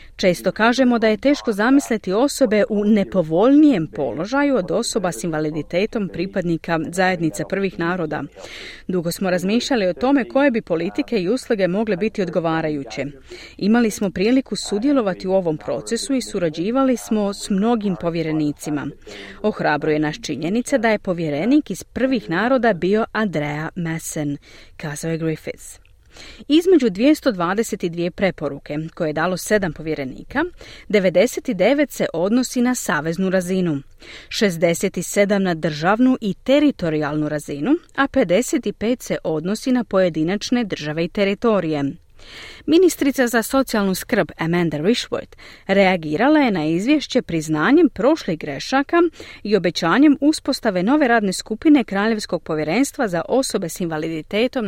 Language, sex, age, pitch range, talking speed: Croatian, female, 40-59, 165-245 Hz, 125 wpm